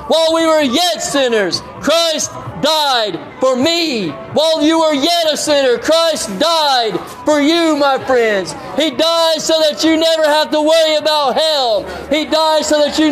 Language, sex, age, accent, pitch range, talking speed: English, male, 50-69, American, 280-315 Hz, 170 wpm